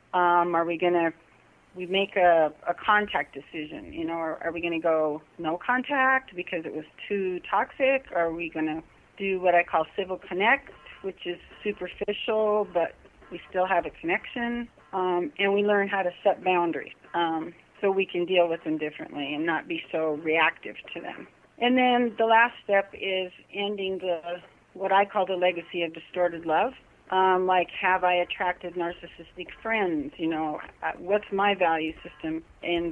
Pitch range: 165-200 Hz